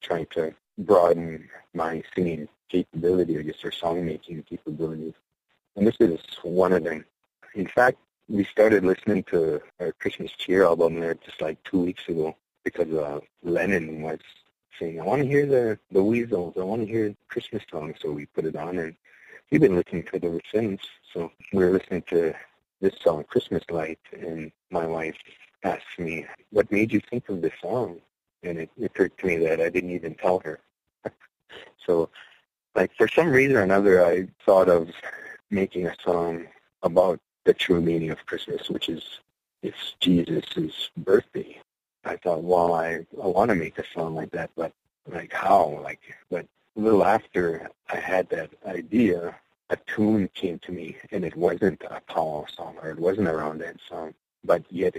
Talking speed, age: 180 wpm, 40-59